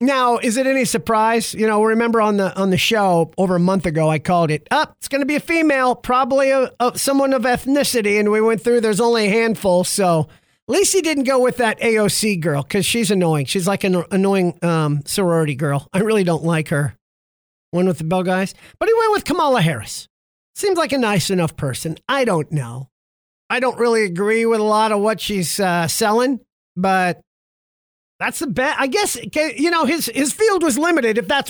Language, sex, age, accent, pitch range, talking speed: English, male, 40-59, American, 185-270 Hz, 215 wpm